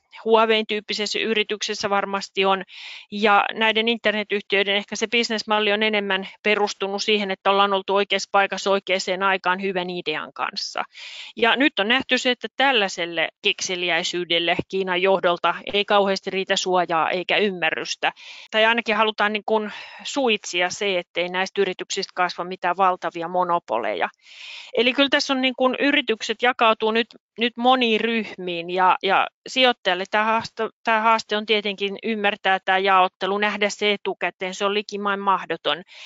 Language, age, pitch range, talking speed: Finnish, 30-49, 185-220 Hz, 140 wpm